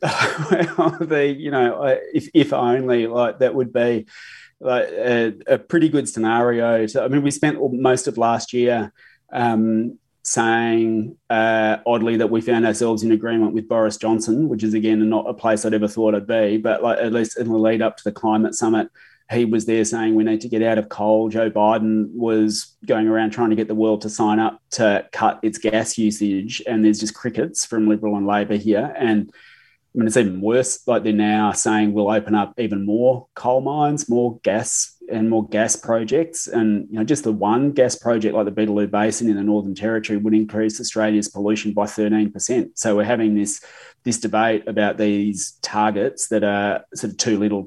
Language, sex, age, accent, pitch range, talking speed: English, male, 20-39, Australian, 105-115 Hz, 205 wpm